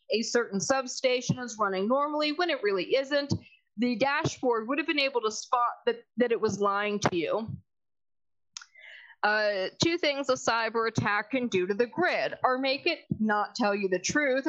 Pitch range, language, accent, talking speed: 205-275 Hz, English, American, 180 wpm